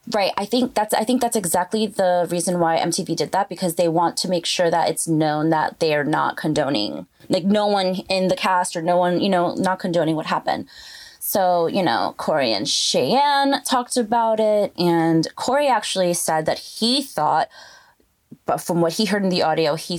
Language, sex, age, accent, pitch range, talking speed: English, female, 20-39, American, 175-215 Hz, 200 wpm